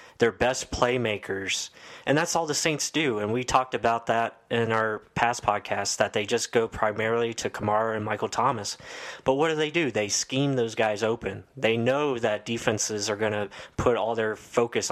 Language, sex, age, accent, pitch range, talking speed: English, male, 20-39, American, 105-125 Hz, 195 wpm